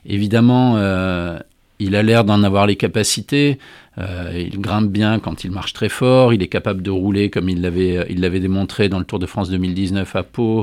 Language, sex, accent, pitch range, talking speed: French, male, French, 95-120 Hz, 210 wpm